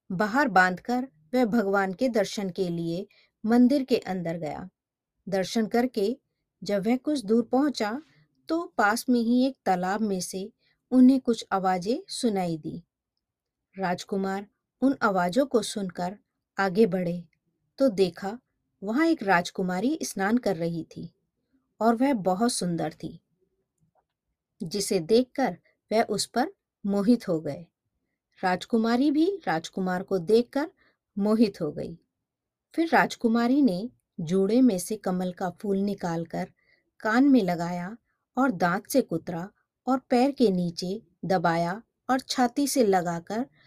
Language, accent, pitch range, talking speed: Hindi, native, 180-250 Hz, 130 wpm